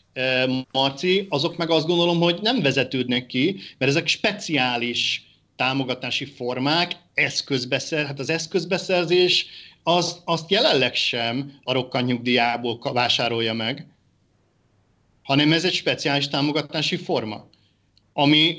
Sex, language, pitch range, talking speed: male, Hungarian, 120-165 Hz, 105 wpm